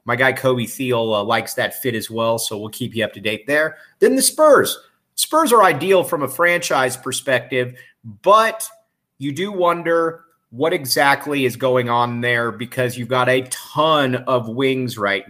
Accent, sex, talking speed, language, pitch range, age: American, male, 180 wpm, English, 115-140 Hz, 30-49